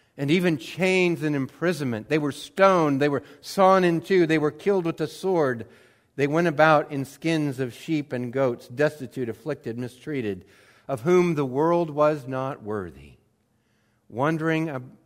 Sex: male